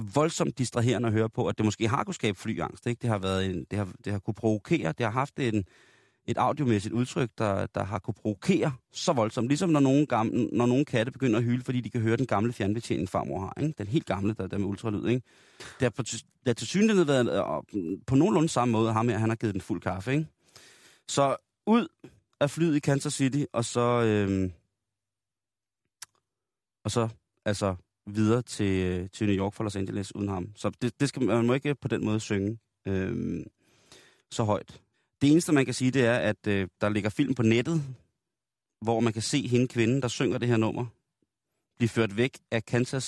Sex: male